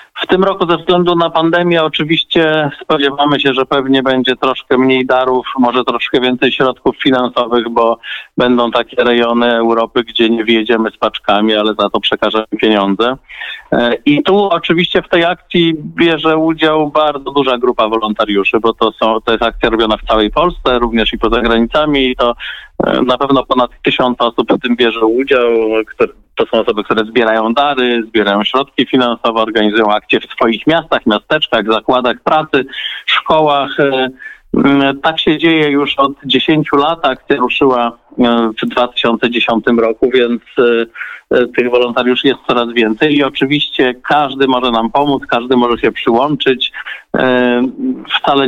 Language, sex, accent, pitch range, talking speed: Polish, male, native, 115-145 Hz, 150 wpm